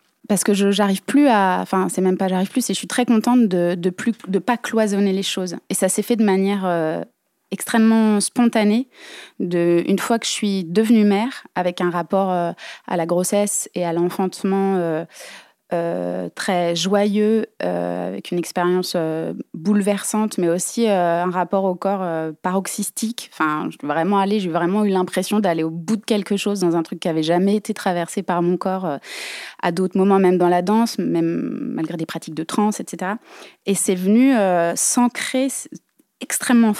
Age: 20-39